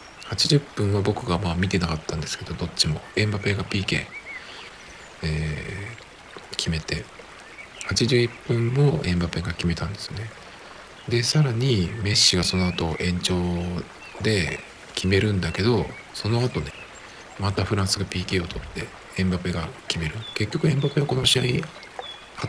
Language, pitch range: Japanese, 90-125 Hz